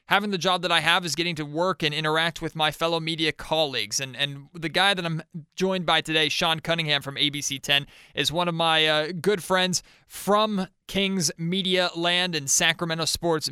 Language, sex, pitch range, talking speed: English, male, 130-160 Hz, 195 wpm